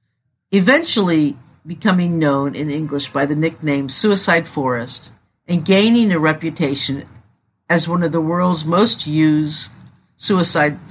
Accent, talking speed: American, 120 wpm